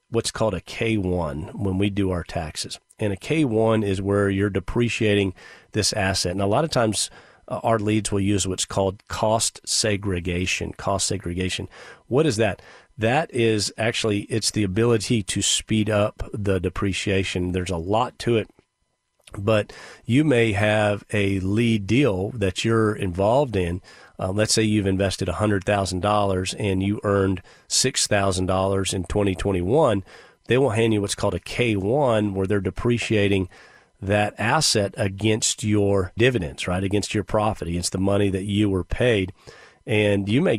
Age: 40-59